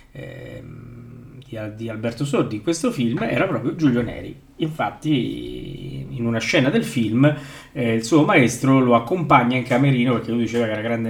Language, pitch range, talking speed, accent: Italian, 115-145 Hz, 175 wpm, native